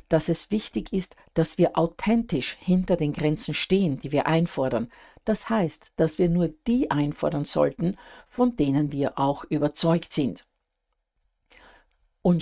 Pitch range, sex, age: 145-180 Hz, female, 50-69